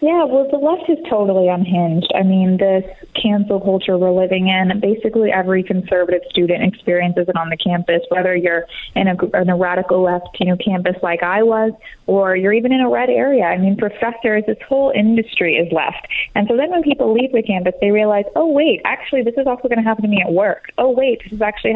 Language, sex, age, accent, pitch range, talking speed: English, female, 20-39, American, 185-220 Hz, 225 wpm